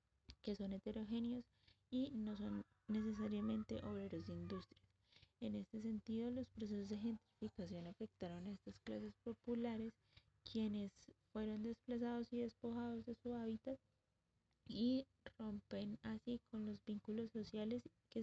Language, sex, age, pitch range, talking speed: Spanish, female, 20-39, 205-230 Hz, 125 wpm